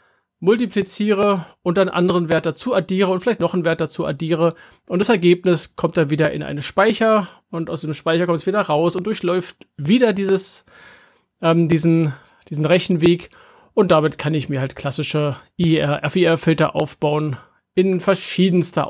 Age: 40-59